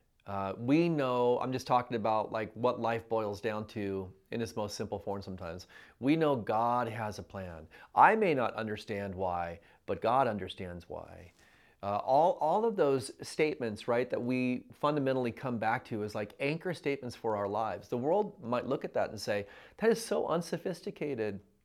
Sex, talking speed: male, 185 wpm